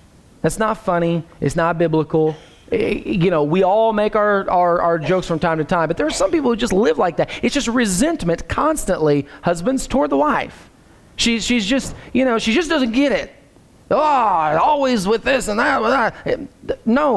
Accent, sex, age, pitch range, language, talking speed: American, male, 30-49, 170-250 Hz, English, 190 wpm